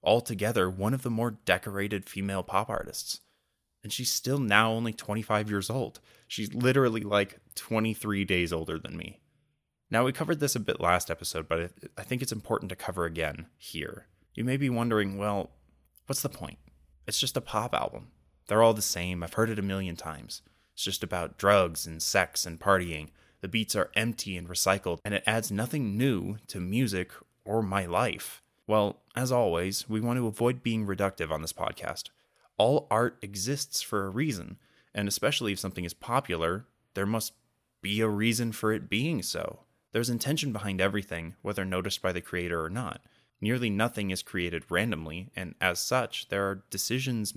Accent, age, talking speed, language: American, 20-39, 180 wpm, English